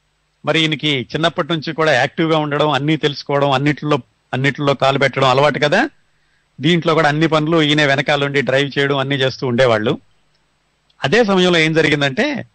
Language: Telugu